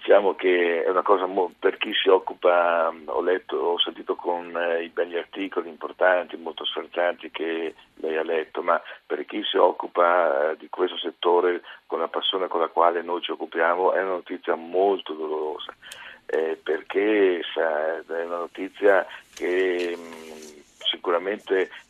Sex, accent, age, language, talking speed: male, native, 50-69, Italian, 160 wpm